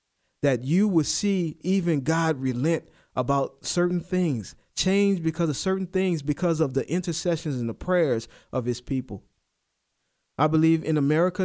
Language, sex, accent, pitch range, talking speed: English, male, American, 150-195 Hz, 150 wpm